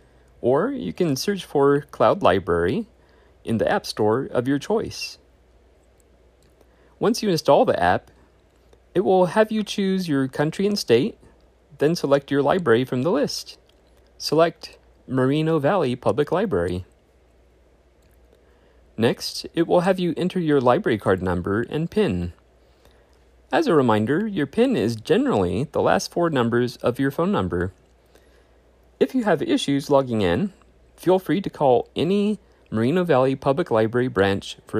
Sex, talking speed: male, 145 wpm